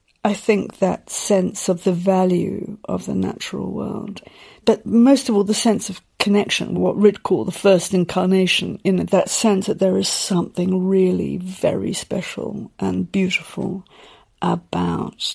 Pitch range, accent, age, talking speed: 180-210 Hz, British, 50-69, 150 wpm